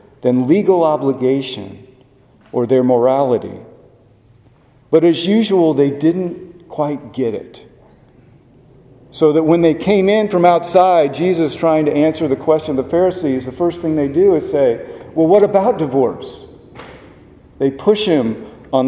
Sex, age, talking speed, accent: male, 50-69, 145 wpm, American